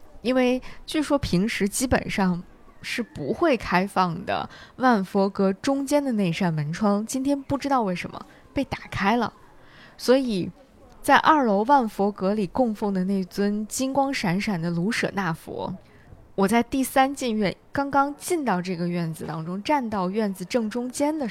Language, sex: Chinese, female